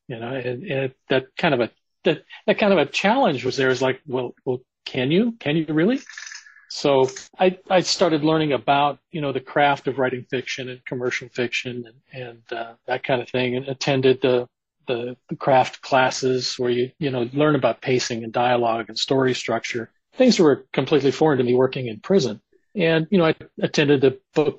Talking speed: 205 wpm